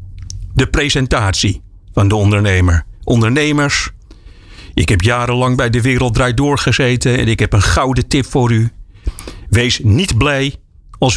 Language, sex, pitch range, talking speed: Dutch, male, 100-135 Hz, 140 wpm